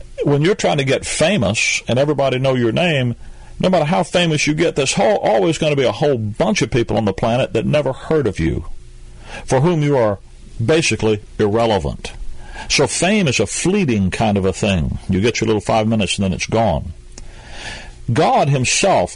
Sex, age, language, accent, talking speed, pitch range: male, 40-59, English, American, 195 wpm, 105-145 Hz